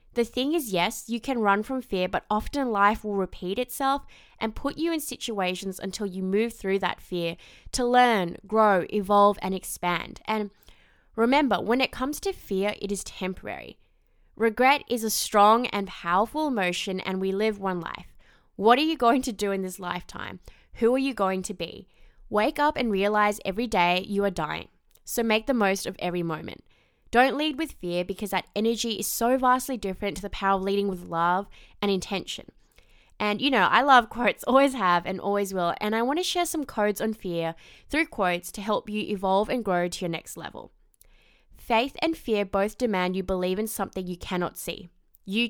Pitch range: 185-235 Hz